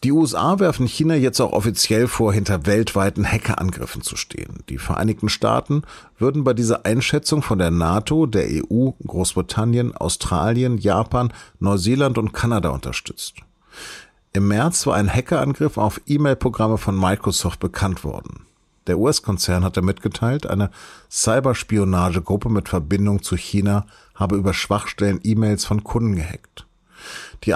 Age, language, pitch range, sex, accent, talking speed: 40-59, German, 95-120 Hz, male, German, 135 wpm